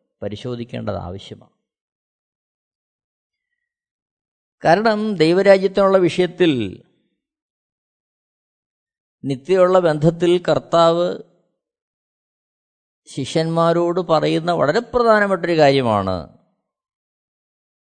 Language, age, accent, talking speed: Malayalam, 20-39, native, 45 wpm